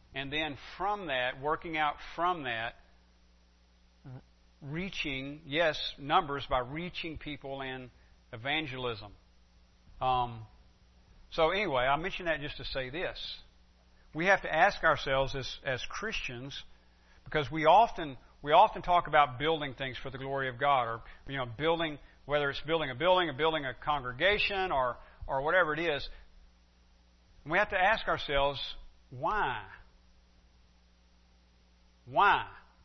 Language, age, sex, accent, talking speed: English, 50-69, male, American, 135 wpm